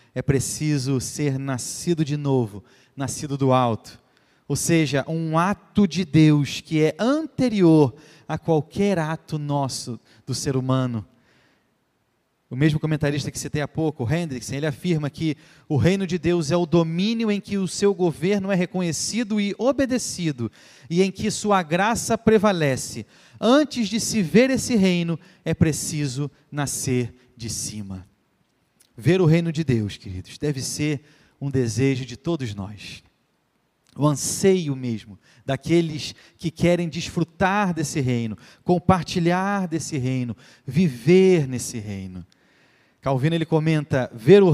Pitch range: 135-185 Hz